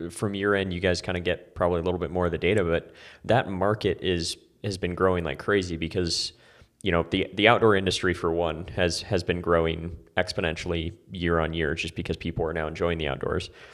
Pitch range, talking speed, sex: 85-100 Hz, 220 wpm, male